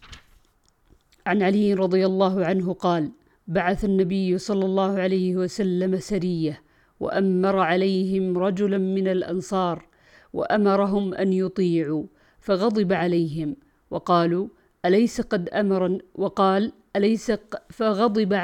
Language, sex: Arabic, female